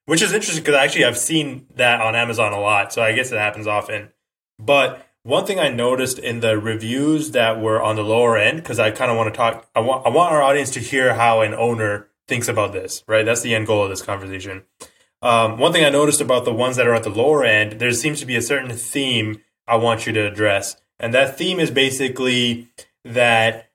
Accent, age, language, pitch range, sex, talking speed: American, 20-39, English, 115-140 Hz, male, 235 wpm